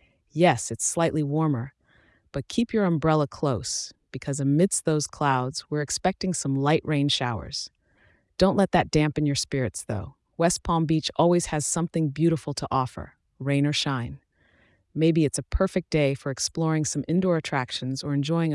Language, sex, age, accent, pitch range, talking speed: English, female, 30-49, American, 135-165 Hz, 160 wpm